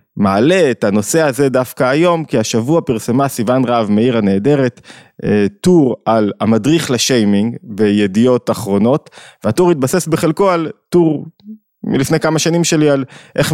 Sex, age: male, 20-39